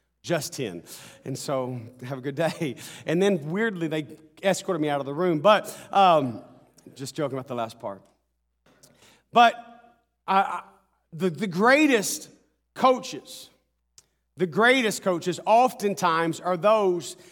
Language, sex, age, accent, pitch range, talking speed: English, male, 40-59, American, 185-245 Hz, 130 wpm